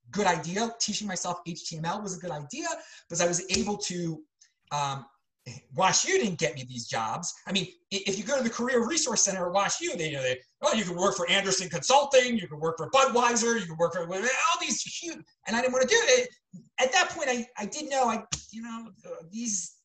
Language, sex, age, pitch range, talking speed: English, male, 30-49, 160-235 Hz, 225 wpm